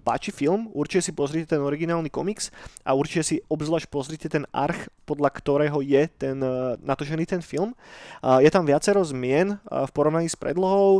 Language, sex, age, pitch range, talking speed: Slovak, male, 20-39, 140-165 Hz, 160 wpm